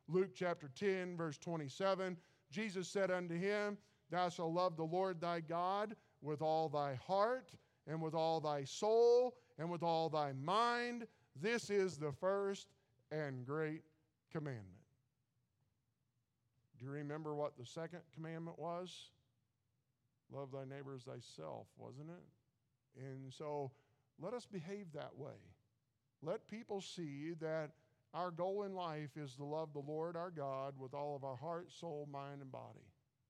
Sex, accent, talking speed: male, American, 150 wpm